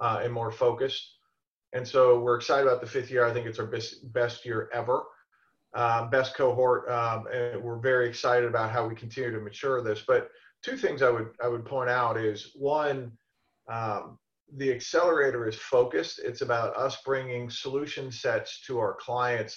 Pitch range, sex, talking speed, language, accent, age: 115-135 Hz, male, 185 wpm, English, American, 40-59